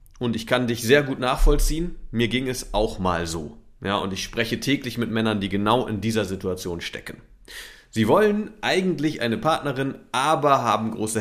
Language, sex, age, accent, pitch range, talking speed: German, male, 40-59, German, 100-145 Hz, 180 wpm